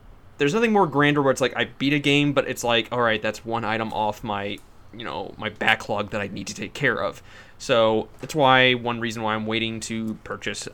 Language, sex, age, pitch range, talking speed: English, male, 20-39, 110-135 Hz, 230 wpm